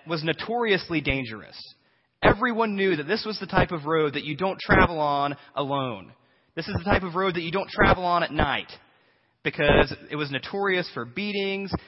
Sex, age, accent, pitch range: male, 20-39, American, 120-190 Hz